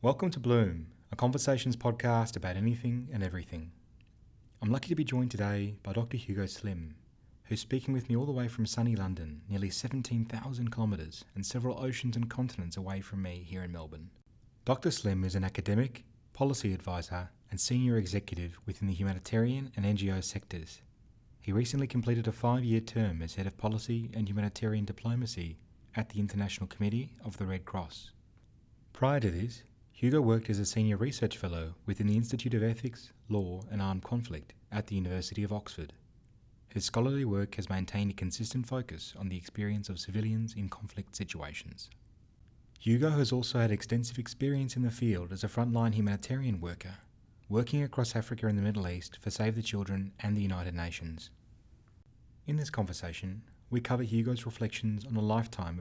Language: English